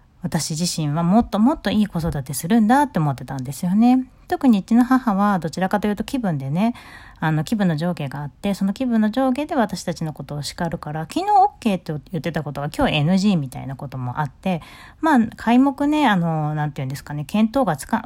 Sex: female